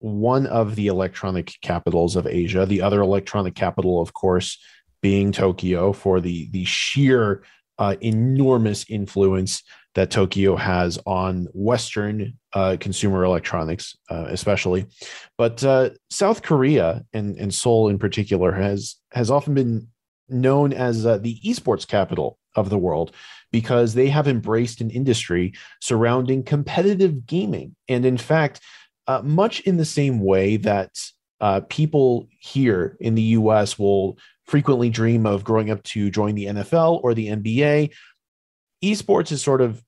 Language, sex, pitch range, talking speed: English, male, 100-130 Hz, 145 wpm